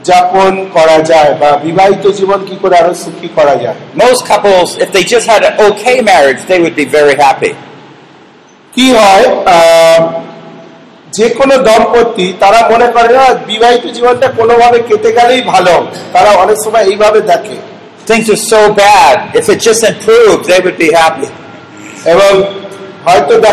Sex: male